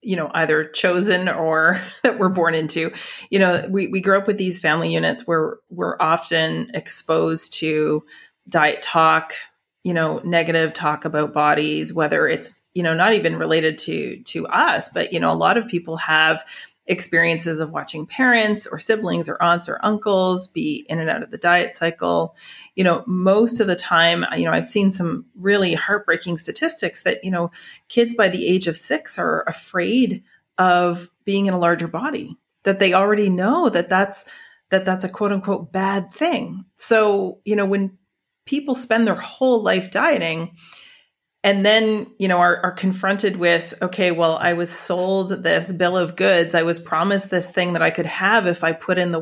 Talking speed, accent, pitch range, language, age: 185 wpm, American, 165-200 Hz, English, 30-49